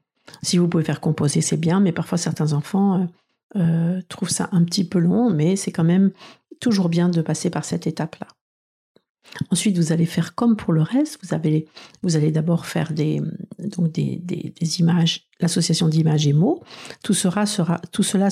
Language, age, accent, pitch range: French, 50-69, French, 165-200 Hz